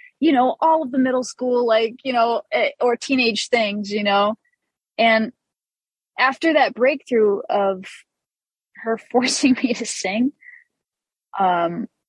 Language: English